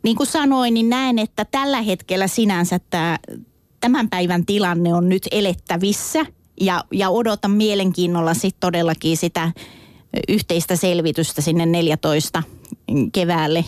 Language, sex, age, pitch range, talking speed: Finnish, female, 30-49, 170-230 Hz, 125 wpm